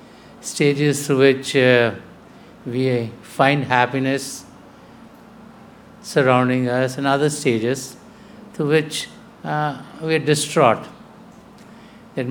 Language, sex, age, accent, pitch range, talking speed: English, male, 60-79, Indian, 130-160 Hz, 95 wpm